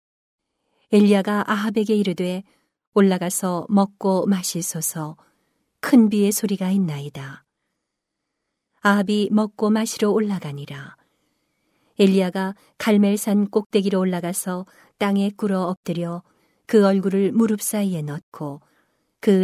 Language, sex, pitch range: Korean, female, 175-210 Hz